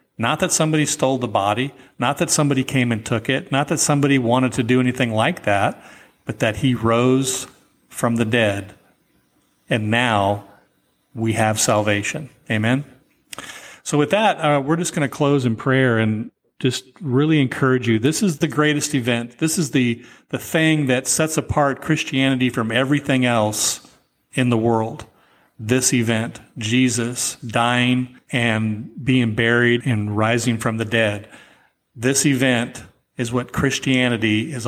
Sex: male